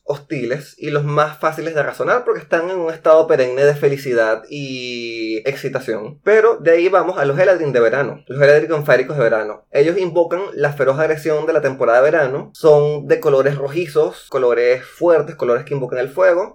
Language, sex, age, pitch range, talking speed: Spanish, male, 20-39, 140-175 Hz, 190 wpm